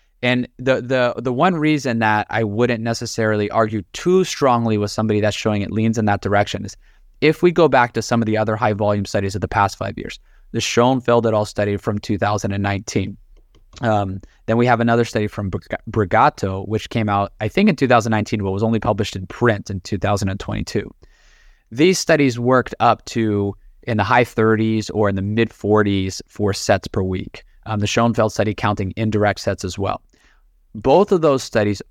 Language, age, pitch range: English, 20-39, 100-120 Hz